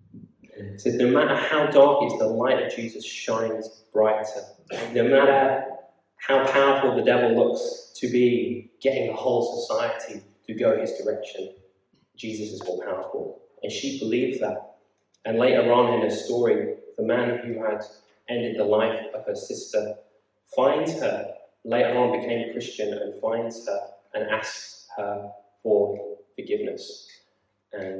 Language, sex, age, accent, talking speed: English, male, 20-39, British, 150 wpm